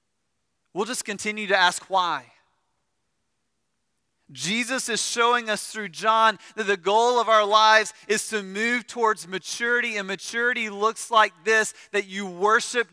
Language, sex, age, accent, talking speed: English, male, 30-49, American, 145 wpm